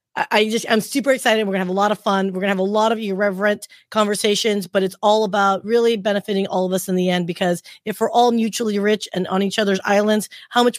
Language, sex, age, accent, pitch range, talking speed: English, female, 30-49, American, 185-230 Hz, 260 wpm